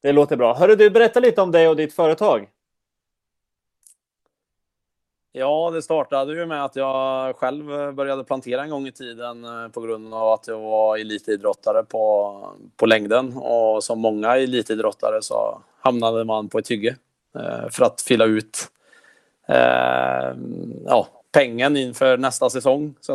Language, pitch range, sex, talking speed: Swedish, 110-135 Hz, male, 150 wpm